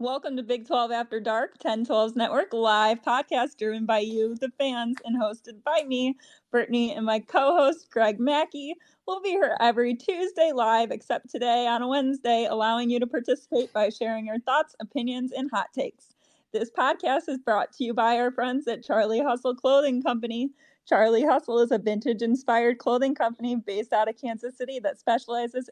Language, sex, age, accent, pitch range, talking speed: English, female, 20-39, American, 220-275 Hz, 180 wpm